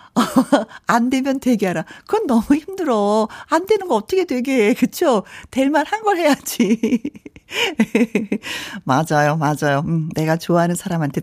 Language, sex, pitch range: Korean, female, 190-285 Hz